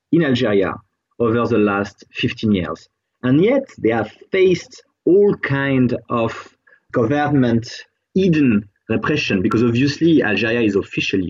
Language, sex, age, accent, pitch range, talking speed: English, male, 30-49, French, 105-145 Hz, 120 wpm